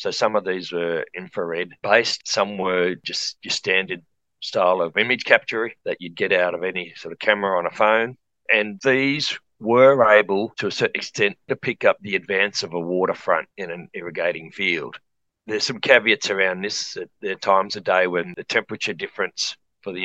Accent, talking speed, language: Australian, 190 wpm, English